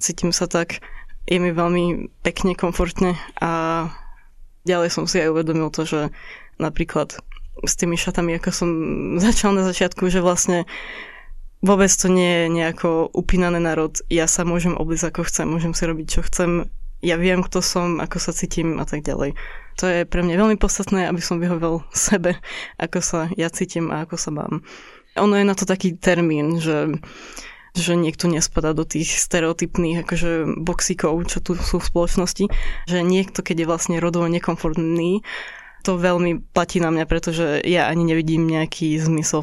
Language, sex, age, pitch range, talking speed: Slovak, female, 20-39, 165-180 Hz, 170 wpm